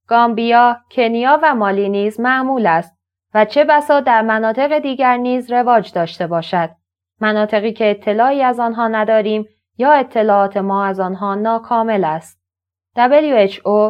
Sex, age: female, 20-39